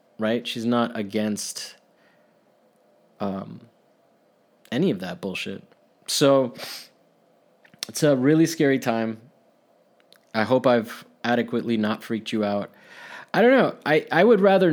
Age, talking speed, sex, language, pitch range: 20-39, 120 wpm, male, English, 115-145 Hz